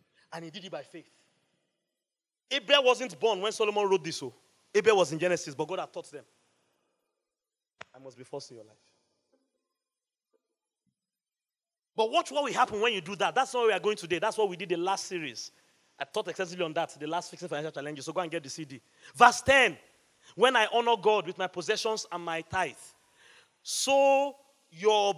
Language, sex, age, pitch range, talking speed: English, male, 30-49, 170-250 Hz, 195 wpm